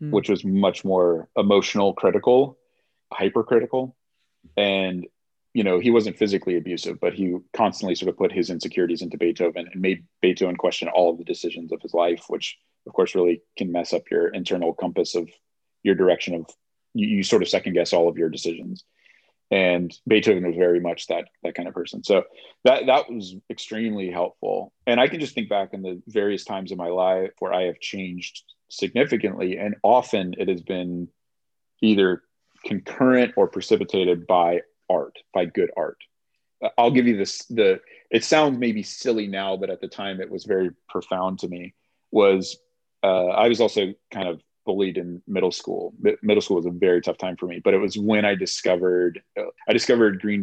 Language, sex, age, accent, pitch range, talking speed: English, male, 30-49, American, 90-110 Hz, 185 wpm